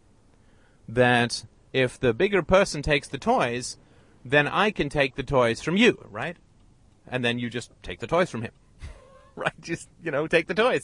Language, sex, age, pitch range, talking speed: English, male, 30-49, 105-135 Hz, 185 wpm